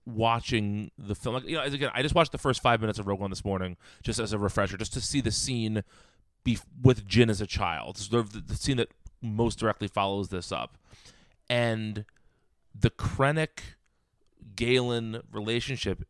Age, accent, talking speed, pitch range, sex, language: 30-49, American, 170 wpm, 100-120 Hz, male, English